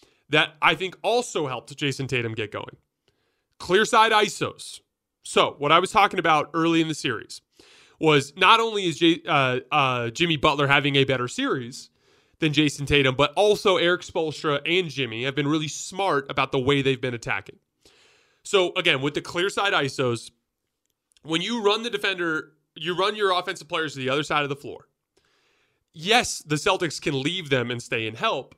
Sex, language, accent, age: male, English, American, 30-49